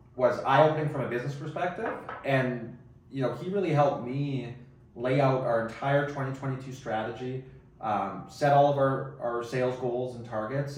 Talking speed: 160 wpm